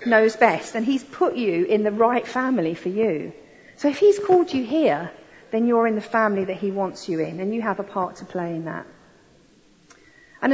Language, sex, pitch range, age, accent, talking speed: English, female, 180-250 Hz, 40-59, British, 215 wpm